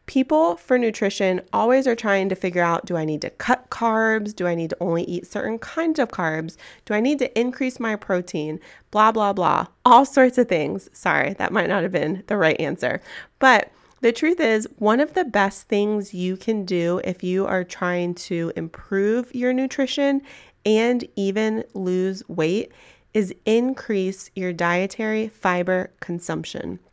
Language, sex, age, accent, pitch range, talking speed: English, female, 30-49, American, 185-240 Hz, 175 wpm